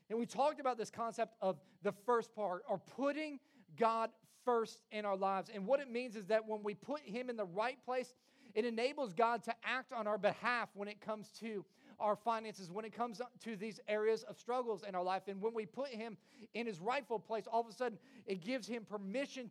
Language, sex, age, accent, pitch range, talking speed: English, male, 40-59, American, 210-250 Hz, 225 wpm